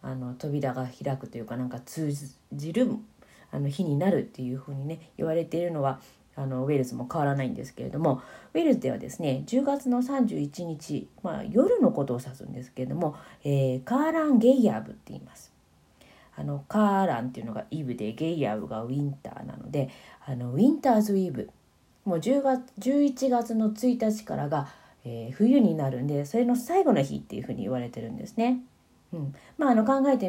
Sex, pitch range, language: female, 130-200 Hz, Japanese